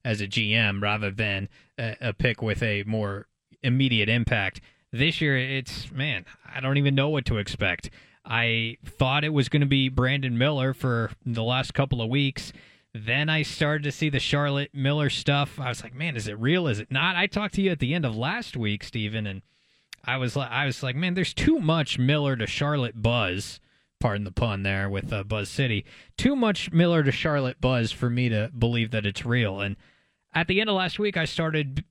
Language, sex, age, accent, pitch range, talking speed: English, male, 20-39, American, 120-175 Hz, 215 wpm